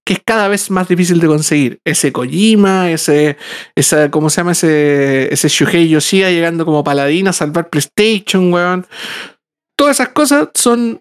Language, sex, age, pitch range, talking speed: Spanish, male, 50-69, 165-215 Hz, 165 wpm